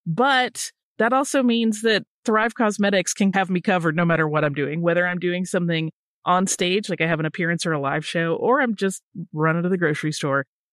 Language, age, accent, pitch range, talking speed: English, 30-49, American, 165-220 Hz, 220 wpm